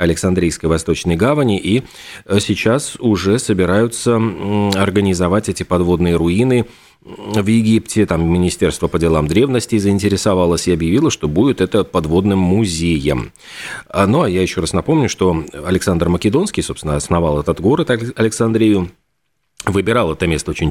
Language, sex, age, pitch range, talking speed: Russian, male, 30-49, 85-105 Hz, 130 wpm